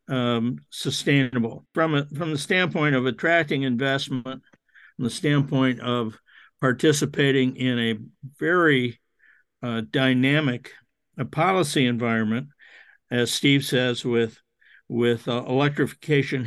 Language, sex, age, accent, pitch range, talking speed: English, male, 60-79, American, 125-145 Hz, 110 wpm